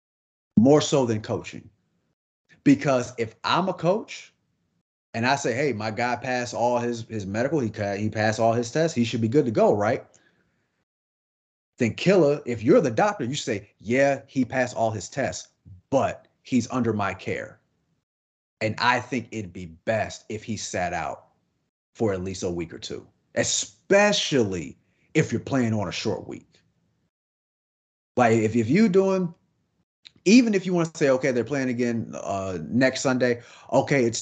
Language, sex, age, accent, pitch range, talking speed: English, male, 30-49, American, 110-155 Hz, 170 wpm